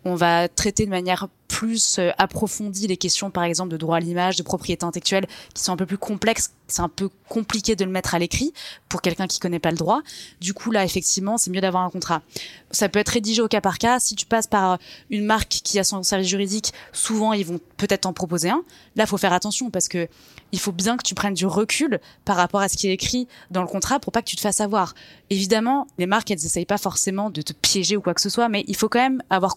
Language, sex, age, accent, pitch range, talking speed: French, female, 20-39, French, 180-215 Hz, 260 wpm